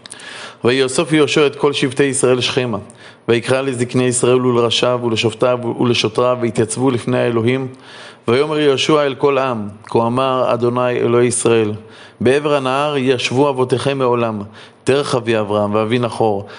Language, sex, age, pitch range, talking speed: Hebrew, male, 20-39, 115-130 Hz, 130 wpm